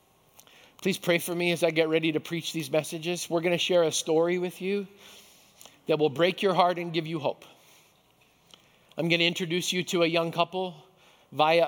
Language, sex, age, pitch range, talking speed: English, male, 50-69, 165-205 Hz, 200 wpm